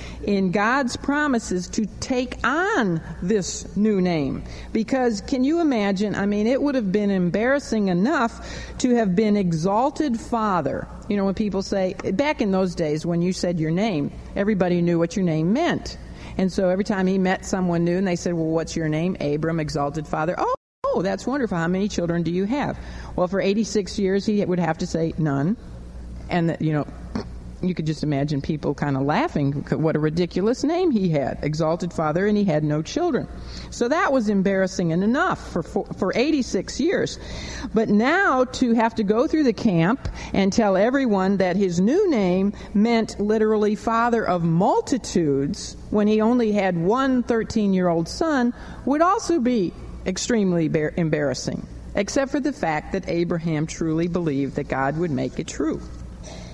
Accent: American